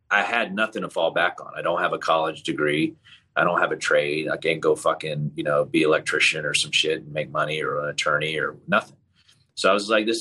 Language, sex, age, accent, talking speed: English, male, 30-49, American, 245 wpm